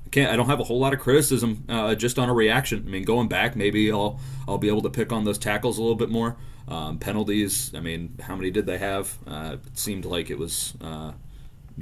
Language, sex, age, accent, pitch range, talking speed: English, male, 30-49, American, 90-115 Hz, 245 wpm